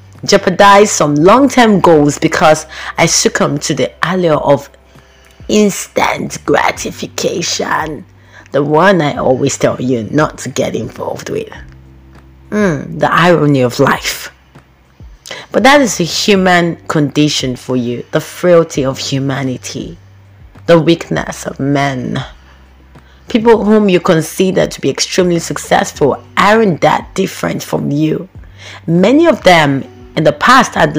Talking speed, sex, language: 125 wpm, female, English